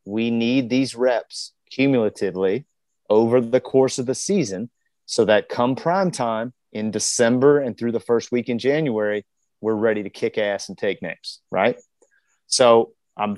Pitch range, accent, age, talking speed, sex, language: 105-130 Hz, American, 30-49, 160 wpm, male, English